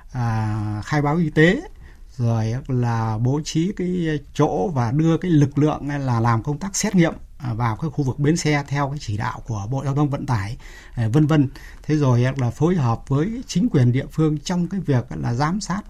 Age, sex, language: 60-79, male, Vietnamese